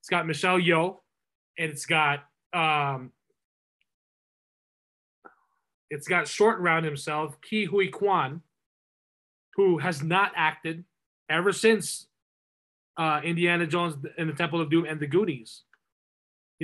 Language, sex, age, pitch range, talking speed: English, male, 20-39, 150-185 Hz, 125 wpm